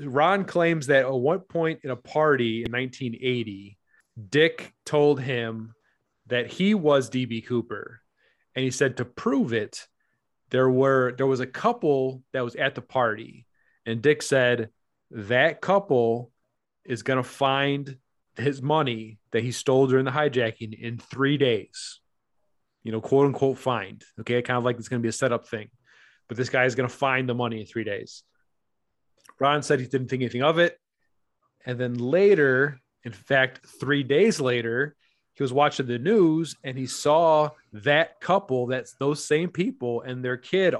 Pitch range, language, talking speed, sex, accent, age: 120-145 Hz, English, 170 wpm, male, American, 30-49